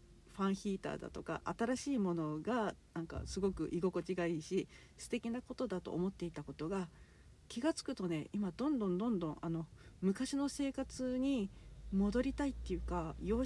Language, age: Japanese, 50-69